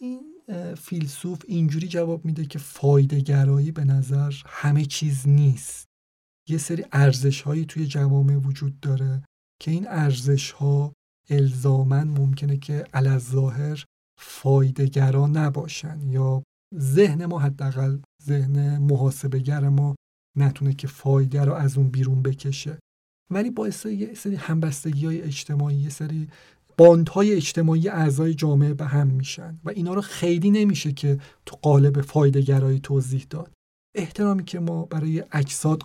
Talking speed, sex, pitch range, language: 130 wpm, male, 140-160 Hz, English